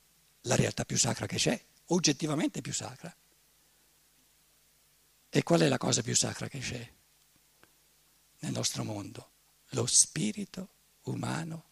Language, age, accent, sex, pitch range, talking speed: Italian, 60-79, native, male, 165-235 Hz, 125 wpm